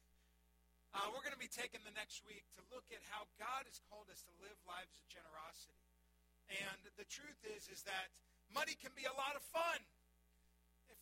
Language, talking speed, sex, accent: English, 195 wpm, male, American